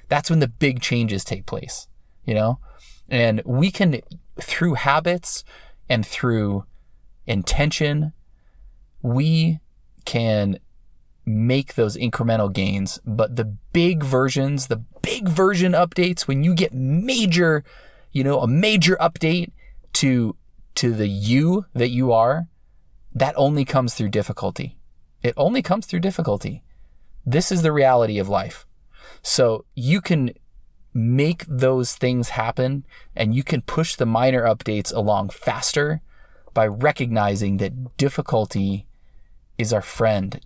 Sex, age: male, 20-39